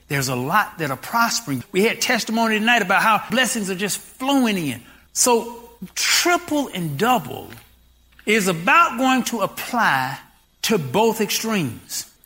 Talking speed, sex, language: 140 wpm, male, English